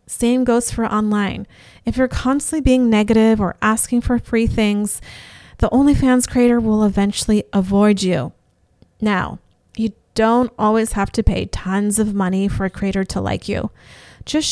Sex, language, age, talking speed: female, English, 30-49, 160 wpm